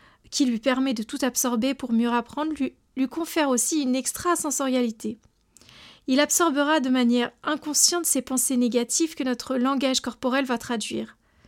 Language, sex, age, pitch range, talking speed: French, female, 40-59, 240-285 Hz, 150 wpm